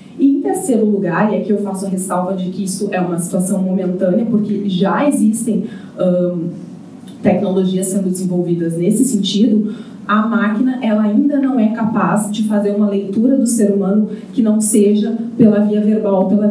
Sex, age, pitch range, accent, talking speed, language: female, 20-39, 200-235 Hz, Brazilian, 165 wpm, Portuguese